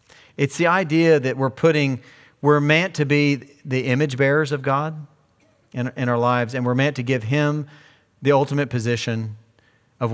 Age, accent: 40-59, American